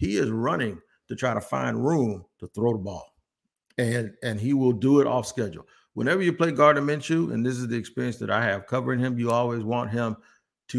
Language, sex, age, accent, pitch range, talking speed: English, male, 50-69, American, 110-140 Hz, 220 wpm